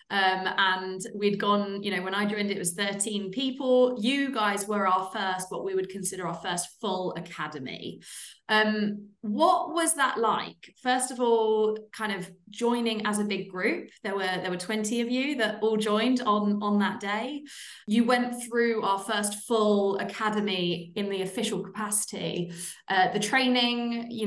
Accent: British